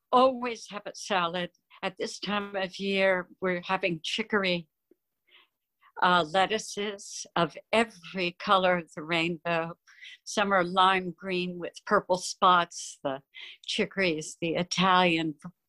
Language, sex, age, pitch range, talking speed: English, female, 60-79, 175-210 Hz, 120 wpm